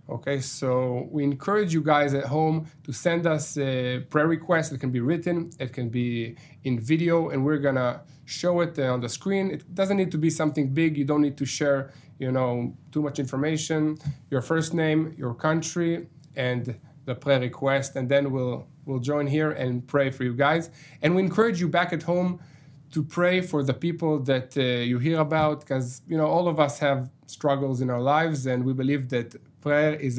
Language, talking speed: English, 205 wpm